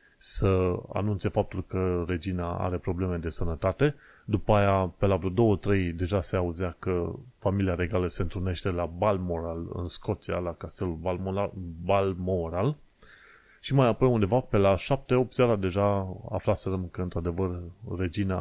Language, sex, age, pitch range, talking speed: Romanian, male, 30-49, 90-110 Hz, 145 wpm